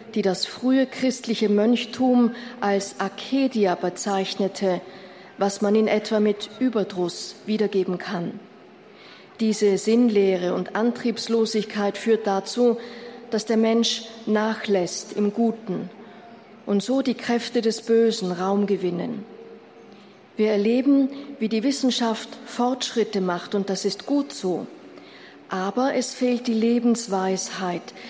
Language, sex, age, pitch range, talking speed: German, female, 40-59, 200-235 Hz, 115 wpm